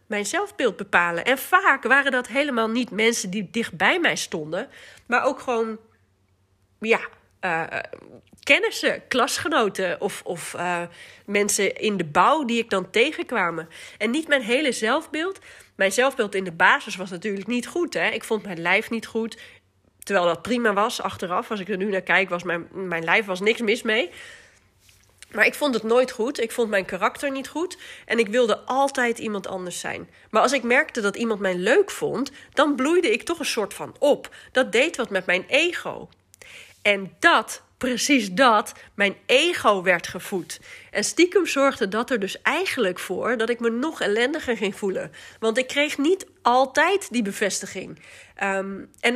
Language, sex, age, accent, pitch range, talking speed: Dutch, female, 30-49, Dutch, 195-270 Hz, 175 wpm